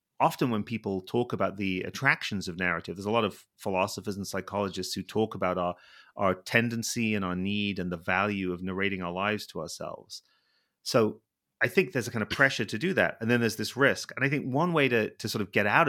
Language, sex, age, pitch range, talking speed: English, male, 30-49, 95-120 Hz, 230 wpm